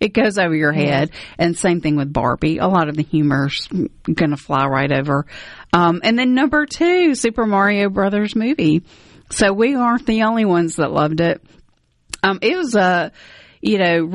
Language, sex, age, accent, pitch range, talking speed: English, female, 40-59, American, 160-195 Hz, 185 wpm